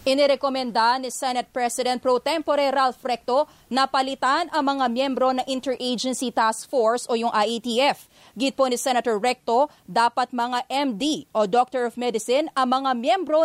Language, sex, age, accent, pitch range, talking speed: English, female, 20-39, Filipino, 240-275 Hz, 155 wpm